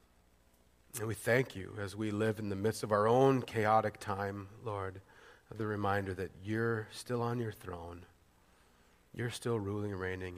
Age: 40-59